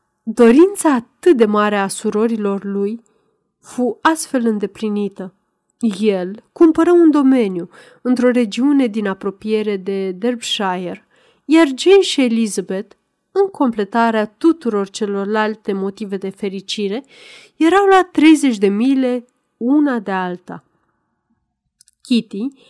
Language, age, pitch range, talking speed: Romanian, 30-49, 205-280 Hz, 105 wpm